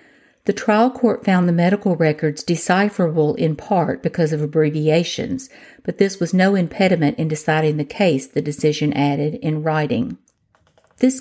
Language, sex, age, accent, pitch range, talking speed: English, female, 50-69, American, 155-185 Hz, 150 wpm